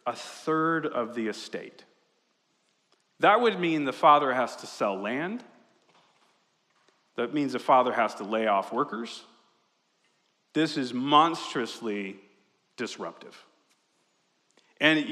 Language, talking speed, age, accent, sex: English, 110 wpm, 40-59, American, male